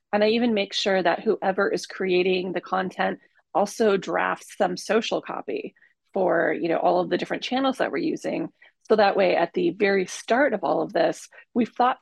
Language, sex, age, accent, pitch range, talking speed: English, female, 30-49, American, 175-225 Hz, 200 wpm